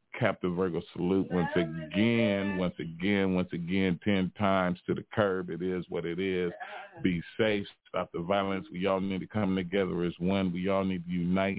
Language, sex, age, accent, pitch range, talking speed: English, male, 40-59, American, 90-100 Hz, 190 wpm